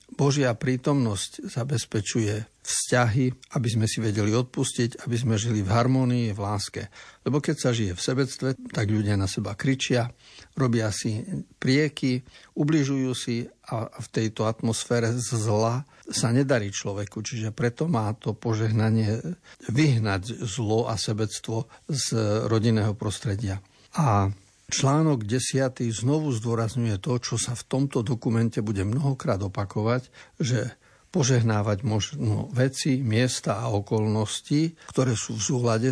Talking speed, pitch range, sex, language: 130 wpm, 110-130 Hz, male, Slovak